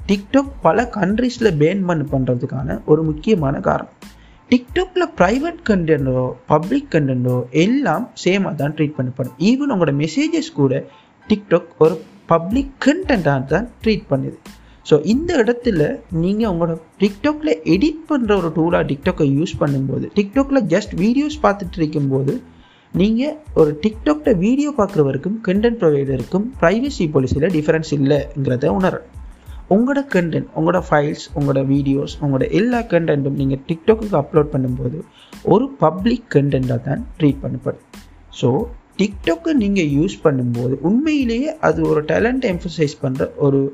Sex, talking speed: male, 125 wpm